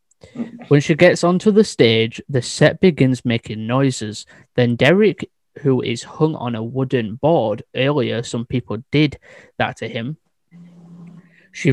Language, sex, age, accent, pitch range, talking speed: English, male, 10-29, British, 120-155 Hz, 145 wpm